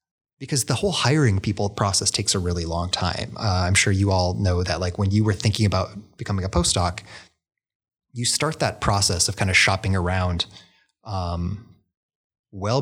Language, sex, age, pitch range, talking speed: English, male, 30-49, 95-115 Hz, 180 wpm